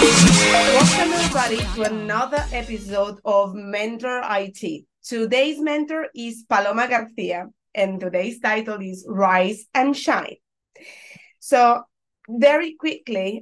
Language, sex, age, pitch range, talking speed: English, female, 30-49, 190-240 Hz, 105 wpm